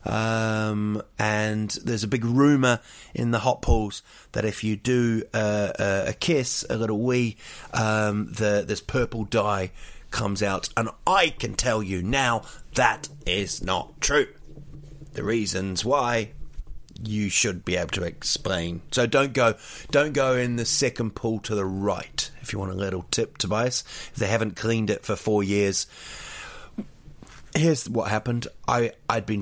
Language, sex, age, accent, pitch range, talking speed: English, male, 30-49, British, 105-135 Hz, 155 wpm